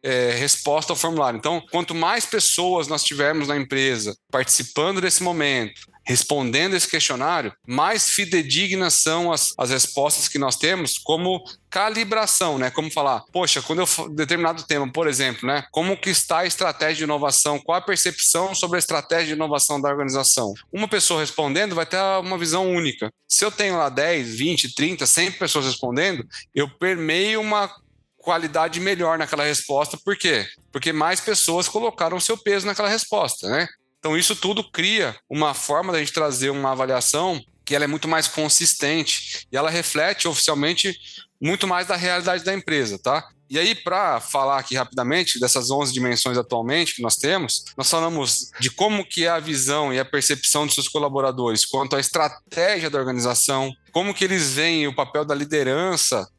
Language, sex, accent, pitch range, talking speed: Portuguese, male, Brazilian, 140-180 Hz, 170 wpm